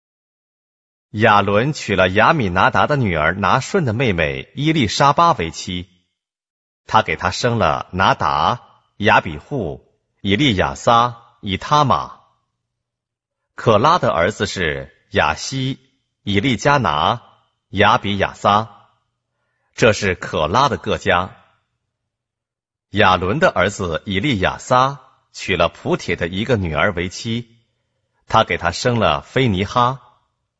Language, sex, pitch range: Korean, male, 95-125 Hz